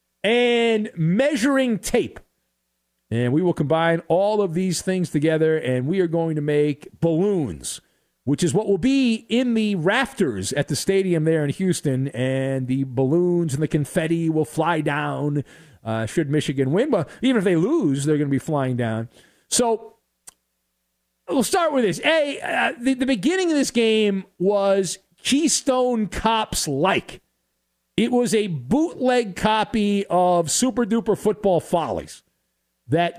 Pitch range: 155-225 Hz